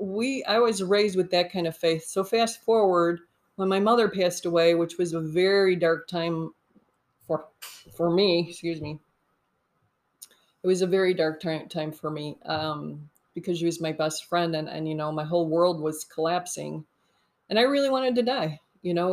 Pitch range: 165-195 Hz